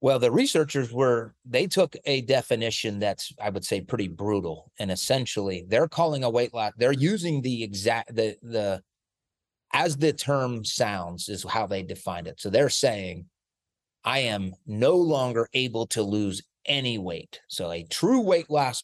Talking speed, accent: 170 wpm, American